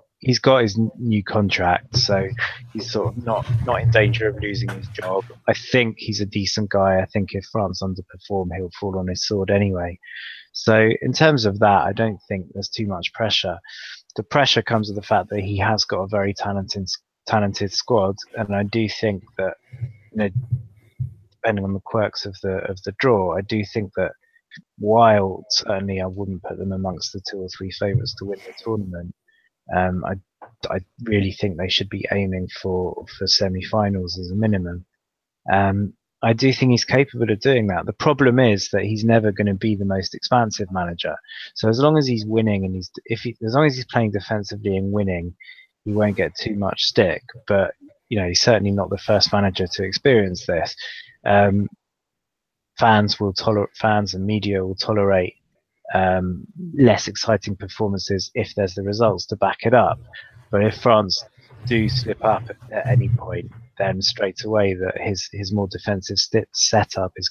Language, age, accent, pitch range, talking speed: English, 20-39, British, 95-115 Hz, 185 wpm